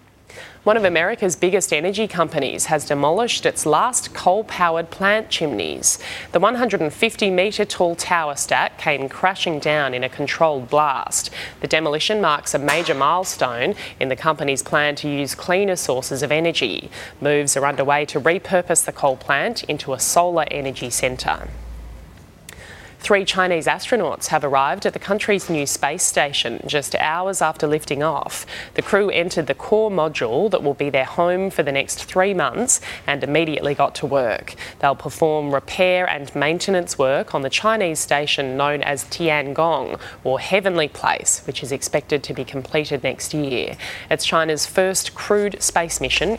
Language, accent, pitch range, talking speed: English, Australian, 140-185 Hz, 155 wpm